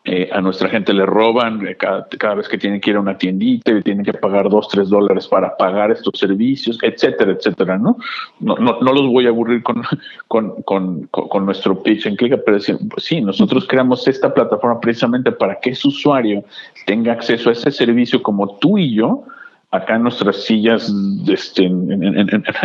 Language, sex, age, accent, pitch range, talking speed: English, male, 50-69, Mexican, 105-130 Hz, 205 wpm